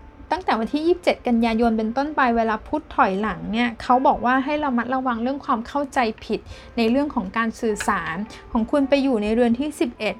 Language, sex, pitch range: Thai, female, 225-270 Hz